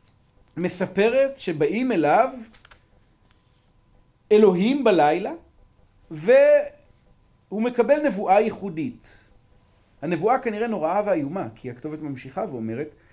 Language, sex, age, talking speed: Hebrew, male, 40-59, 80 wpm